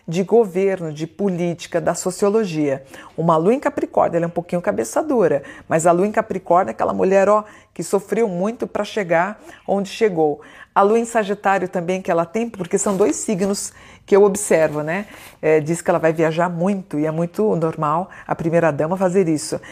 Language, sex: Portuguese, female